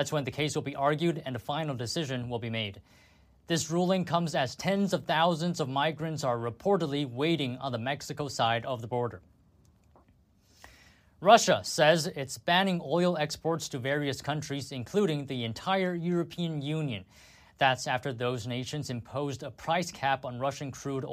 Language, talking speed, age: English, 165 wpm, 20-39